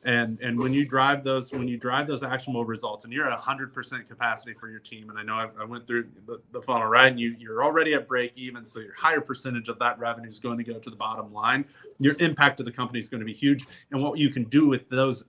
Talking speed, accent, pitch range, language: 285 wpm, American, 115-140 Hz, English